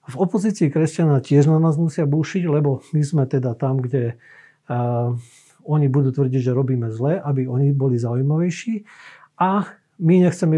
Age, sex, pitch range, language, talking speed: 50-69, male, 130-155 Hz, Slovak, 160 wpm